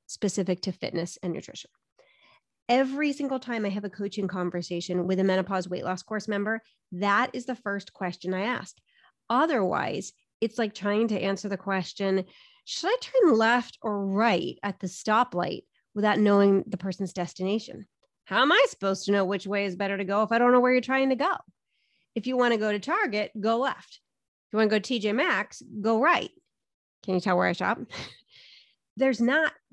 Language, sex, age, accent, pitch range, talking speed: English, female, 30-49, American, 190-245 Hz, 195 wpm